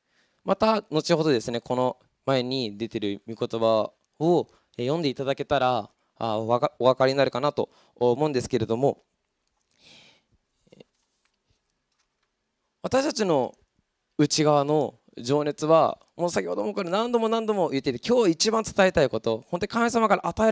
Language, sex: Japanese, male